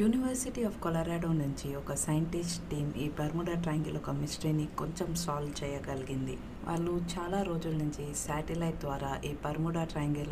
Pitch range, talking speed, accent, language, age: 150-170 Hz, 140 wpm, native, Telugu, 60-79